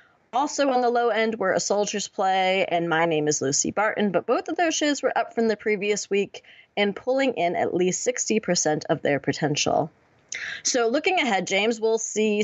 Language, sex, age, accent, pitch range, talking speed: English, female, 20-39, American, 155-220 Hz, 205 wpm